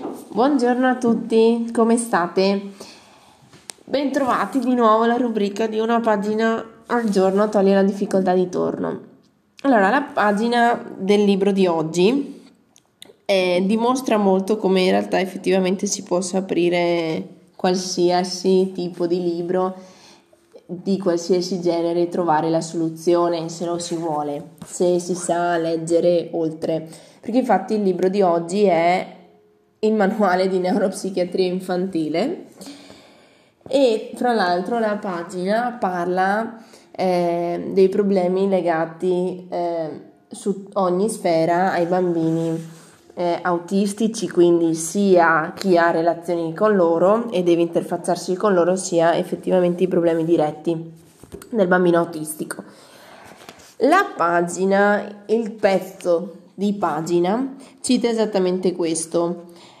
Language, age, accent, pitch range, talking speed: Italian, 20-39, native, 170-205 Hz, 115 wpm